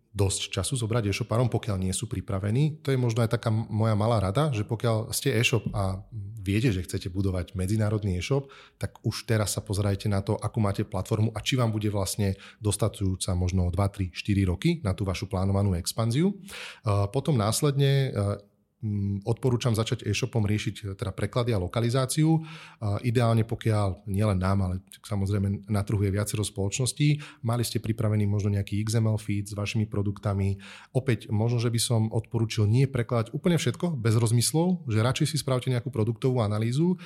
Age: 30-49